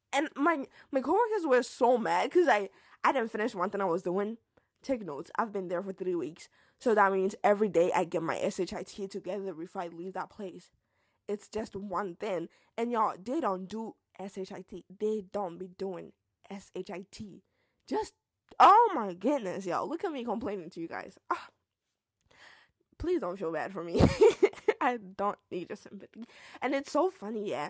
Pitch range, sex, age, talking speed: 185-235 Hz, female, 10-29, 180 wpm